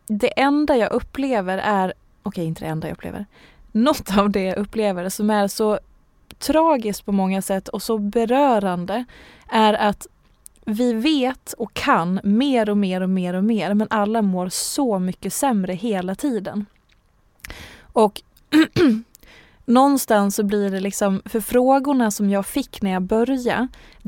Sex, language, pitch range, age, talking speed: female, Swedish, 205-235 Hz, 20-39, 155 wpm